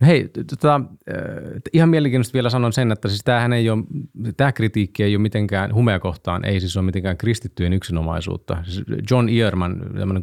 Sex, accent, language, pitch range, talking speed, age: male, native, Finnish, 90-115 Hz, 160 wpm, 30-49